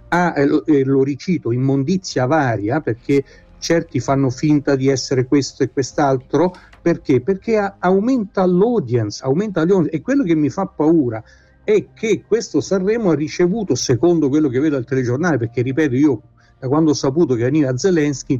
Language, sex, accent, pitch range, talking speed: Italian, male, native, 130-160 Hz, 155 wpm